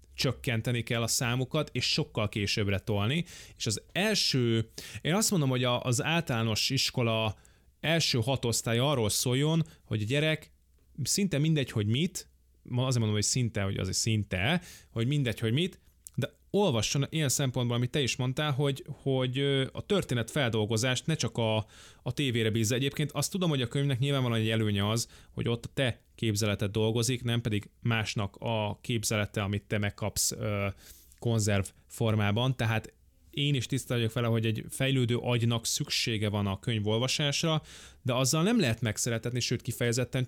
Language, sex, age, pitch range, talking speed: Hungarian, male, 20-39, 110-140 Hz, 155 wpm